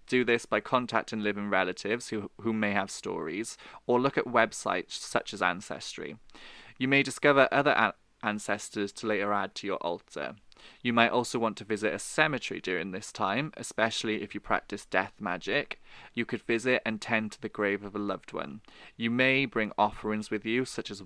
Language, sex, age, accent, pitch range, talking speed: English, male, 20-39, British, 105-120 Hz, 190 wpm